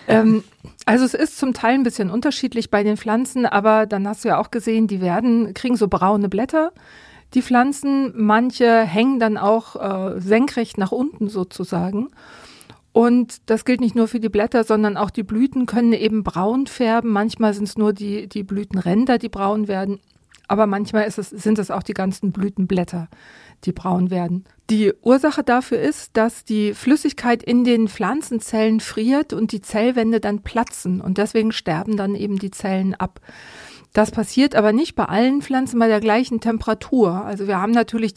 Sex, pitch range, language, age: female, 200-235 Hz, German, 40-59